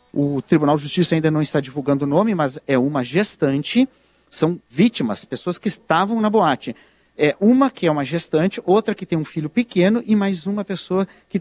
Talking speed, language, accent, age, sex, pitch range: 200 wpm, Portuguese, Brazilian, 50-69, male, 150-190 Hz